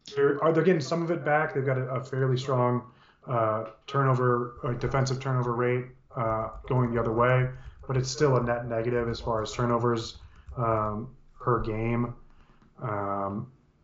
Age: 20-39